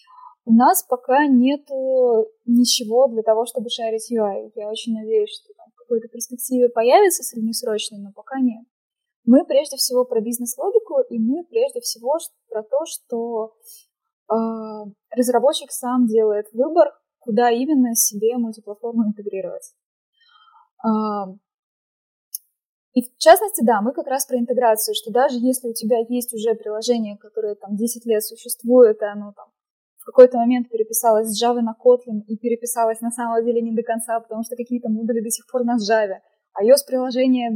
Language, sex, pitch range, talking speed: Russian, female, 225-265 Hz, 155 wpm